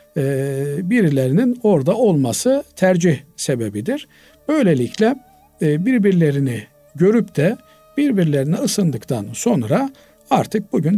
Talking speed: 75 wpm